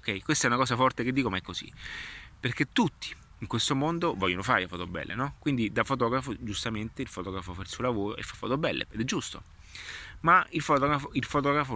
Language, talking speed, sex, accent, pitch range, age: Italian, 220 wpm, male, native, 95-125 Hz, 30-49